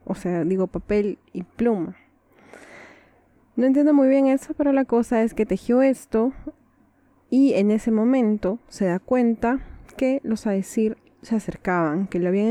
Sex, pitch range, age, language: female, 200-275 Hz, 20-39, Spanish